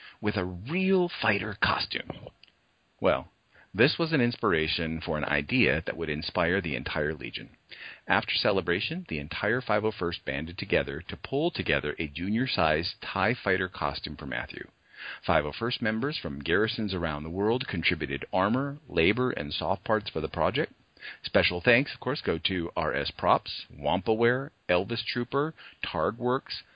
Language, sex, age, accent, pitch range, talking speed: English, male, 40-59, American, 85-120 Hz, 145 wpm